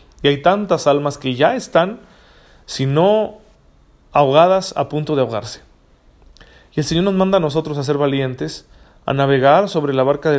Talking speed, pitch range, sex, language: 175 wpm, 120-160 Hz, male, Spanish